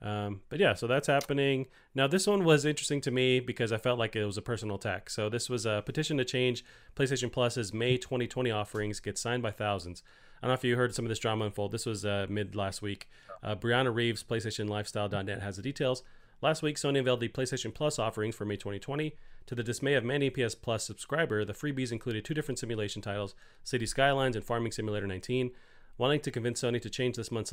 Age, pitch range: 30-49, 105-125 Hz